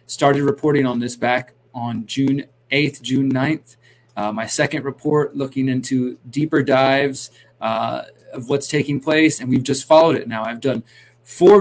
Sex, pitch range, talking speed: male, 125-145 Hz, 165 wpm